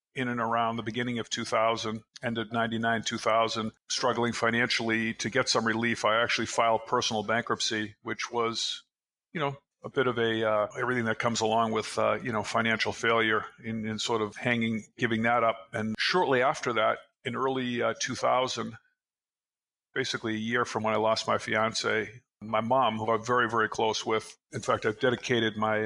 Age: 50-69